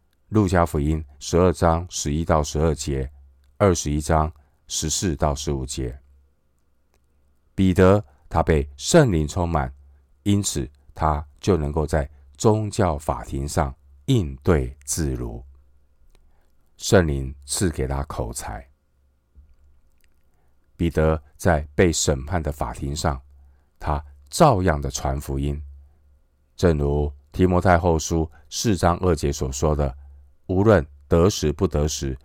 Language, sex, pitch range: Chinese, male, 70-85 Hz